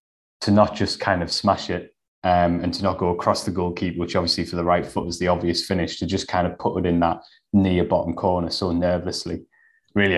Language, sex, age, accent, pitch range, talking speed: English, male, 20-39, British, 85-100 Hz, 230 wpm